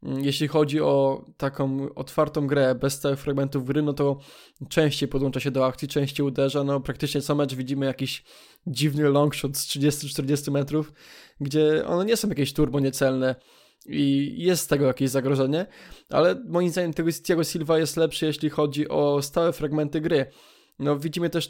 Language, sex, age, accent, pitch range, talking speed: Polish, male, 20-39, native, 140-160 Hz, 165 wpm